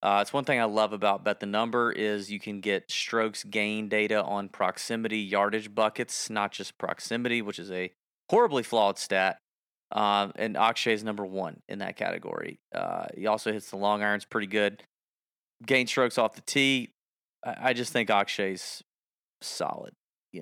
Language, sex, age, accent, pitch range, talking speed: English, male, 30-49, American, 105-125 Hz, 175 wpm